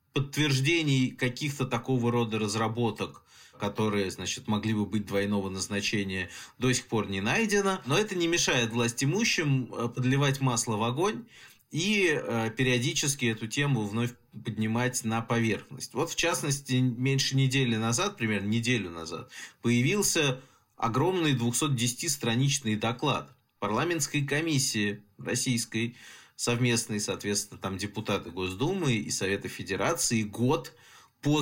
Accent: native